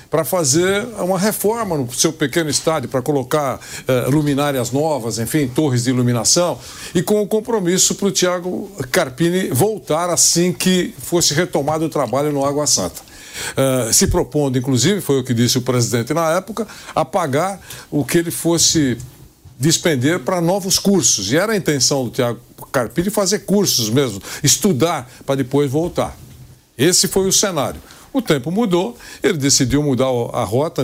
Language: Portuguese